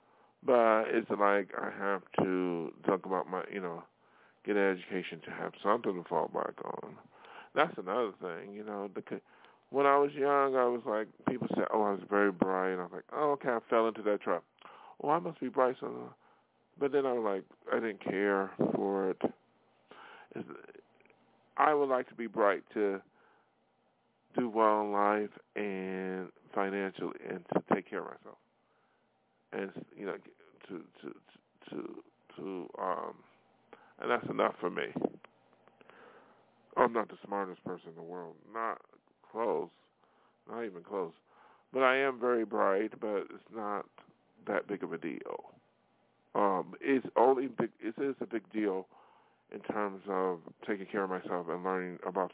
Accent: American